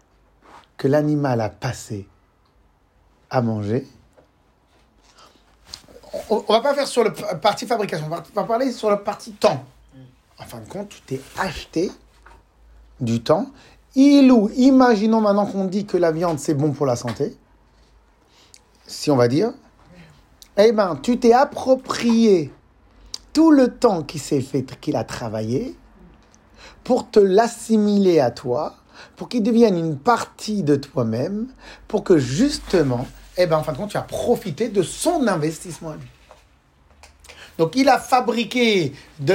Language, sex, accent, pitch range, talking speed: French, male, French, 135-230 Hz, 150 wpm